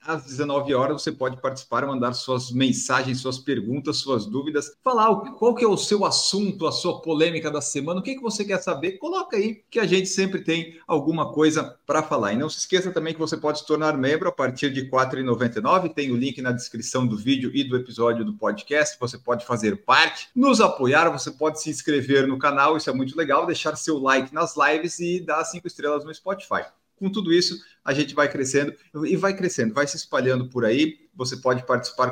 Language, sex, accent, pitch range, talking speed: Portuguese, male, Brazilian, 130-175 Hz, 215 wpm